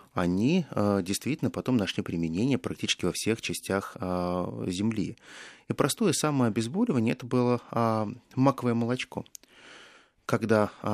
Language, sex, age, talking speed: Russian, male, 30-49, 105 wpm